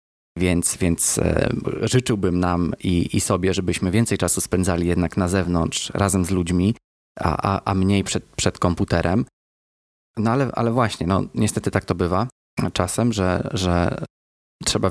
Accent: native